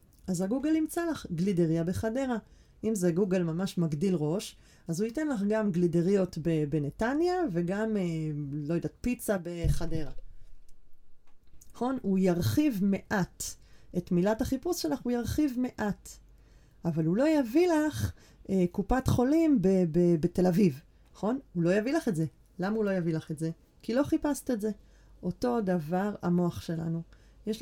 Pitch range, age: 175-225 Hz, 30-49